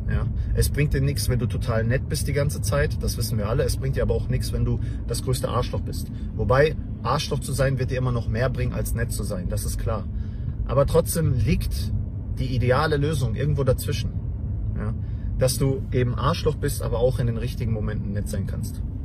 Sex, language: male, English